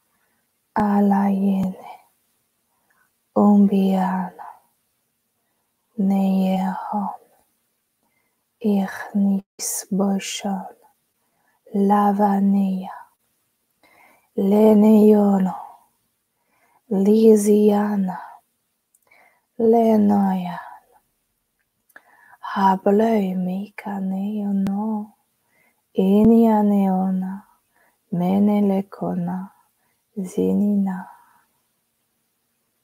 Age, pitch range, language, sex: 20-39, 195-215 Hz, French, female